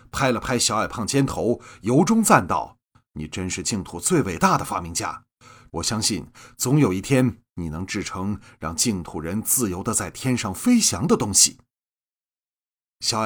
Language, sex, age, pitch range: Chinese, male, 30-49, 105-140 Hz